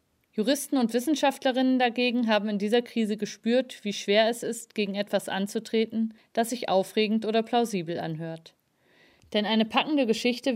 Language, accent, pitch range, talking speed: German, German, 200-245 Hz, 150 wpm